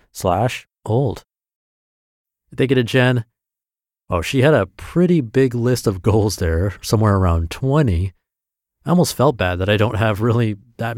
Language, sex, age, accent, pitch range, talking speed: English, male, 30-49, American, 95-120 Hz, 160 wpm